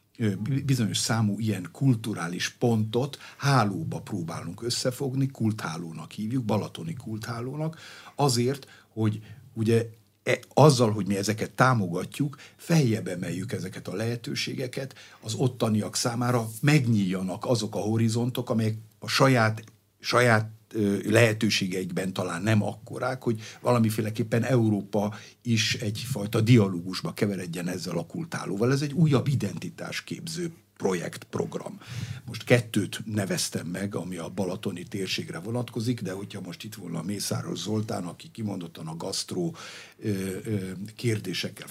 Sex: male